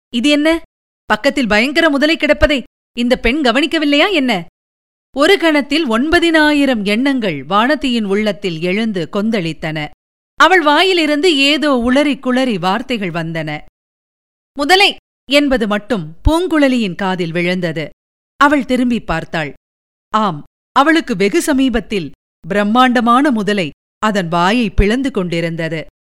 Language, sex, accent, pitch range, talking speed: Tamil, female, native, 210-305 Hz, 100 wpm